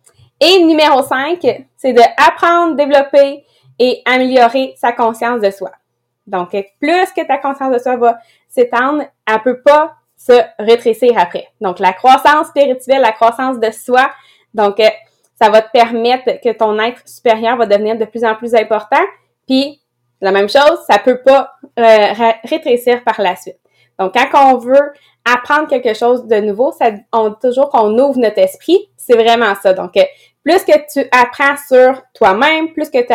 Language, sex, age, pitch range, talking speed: English, female, 20-39, 220-280 Hz, 170 wpm